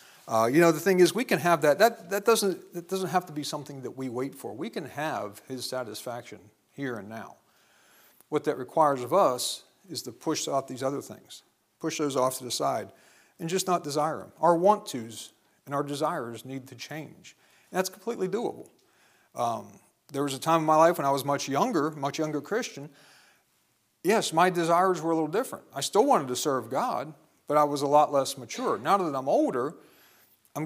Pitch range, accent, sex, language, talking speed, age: 130-160 Hz, American, male, English, 210 wpm, 40-59